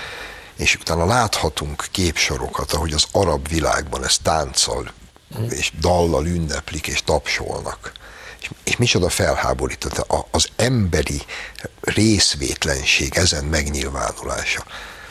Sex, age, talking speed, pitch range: male, 60-79, 95 wpm, 75-100 Hz